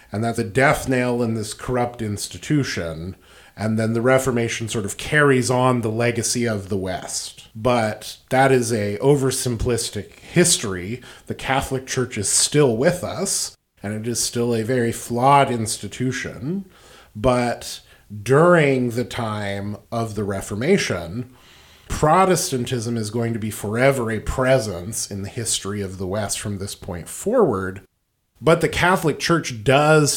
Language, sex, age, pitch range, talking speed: English, male, 30-49, 105-130 Hz, 145 wpm